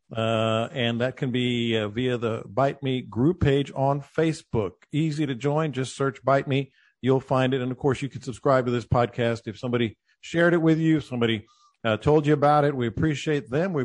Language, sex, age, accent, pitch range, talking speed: English, male, 50-69, American, 125-155 Hz, 210 wpm